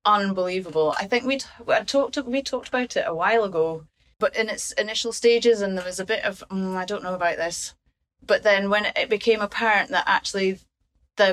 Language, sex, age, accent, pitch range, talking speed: English, female, 30-49, British, 180-220 Hz, 200 wpm